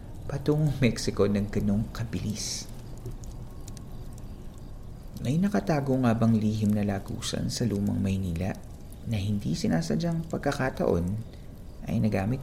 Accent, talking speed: native, 100 wpm